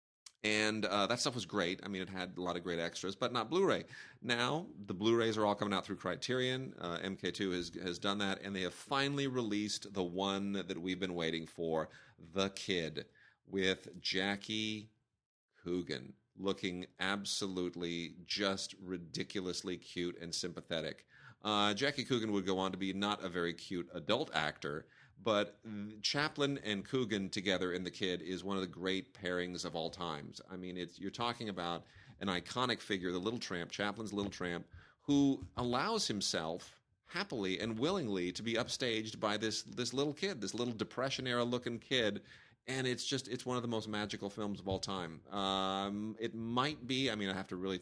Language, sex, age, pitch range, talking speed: English, male, 40-59, 90-110 Hz, 180 wpm